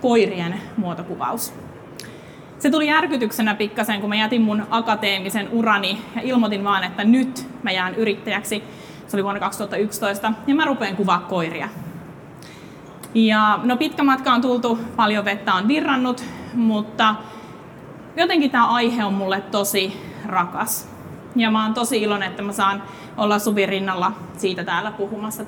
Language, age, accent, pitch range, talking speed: Finnish, 30-49, native, 200-240 Hz, 140 wpm